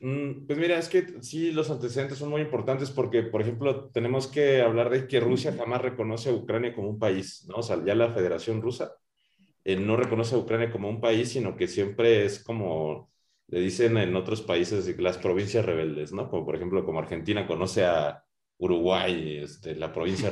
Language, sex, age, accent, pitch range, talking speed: Spanish, male, 30-49, Mexican, 100-135 Hz, 195 wpm